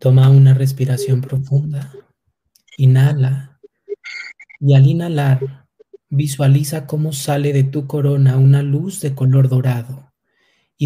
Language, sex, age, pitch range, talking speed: Spanish, male, 30-49, 130-140 Hz, 110 wpm